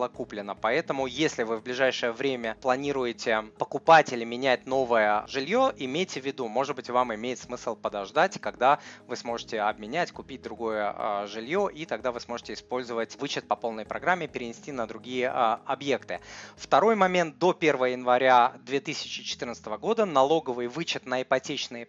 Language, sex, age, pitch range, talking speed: Russian, male, 20-39, 115-155 Hz, 145 wpm